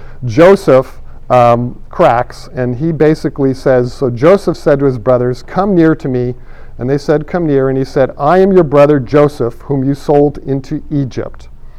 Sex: male